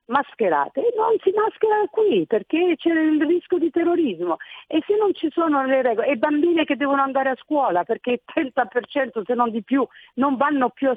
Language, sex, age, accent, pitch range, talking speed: Italian, female, 50-69, native, 205-320 Hz, 200 wpm